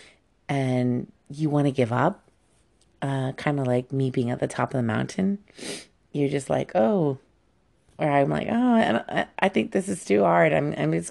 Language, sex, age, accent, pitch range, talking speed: English, female, 30-49, American, 125-145 Hz, 200 wpm